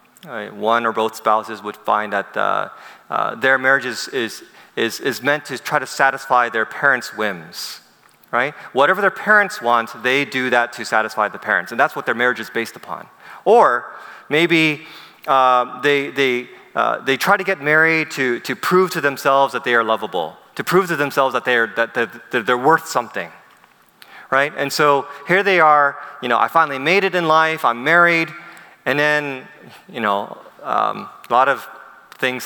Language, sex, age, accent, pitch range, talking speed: English, male, 30-49, American, 120-160 Hz, 185 wpm